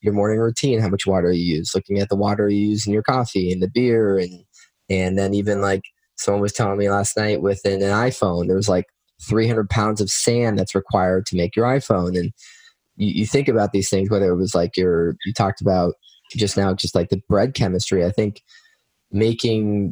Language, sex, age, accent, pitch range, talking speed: English, male, 20-39, American, 95-110 Hz, 220 wpm